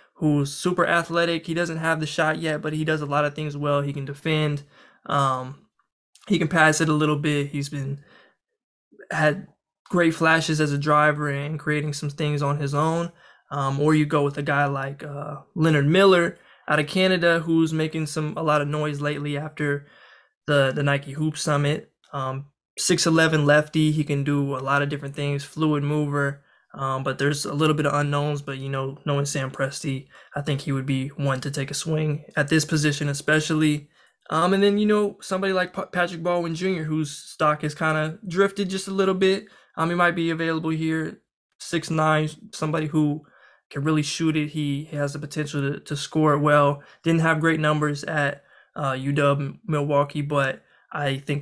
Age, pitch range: 20-39, 145-160 Hz